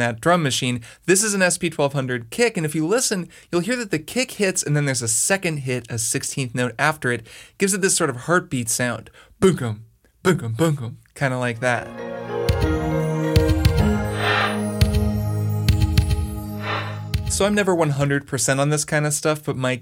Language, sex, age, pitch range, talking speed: English, male, 20-39, 120-155 Hz, 170 wpm